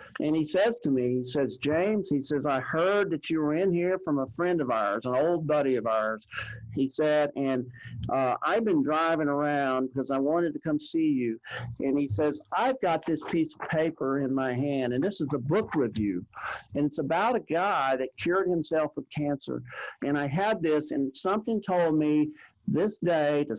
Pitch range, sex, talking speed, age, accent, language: 130-160 Hz, male, 205 wpm, 50-69, American, English